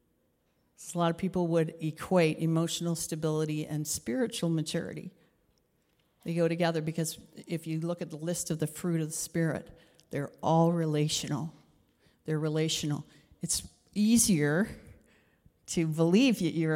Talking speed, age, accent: 135 wpm, 50-69, American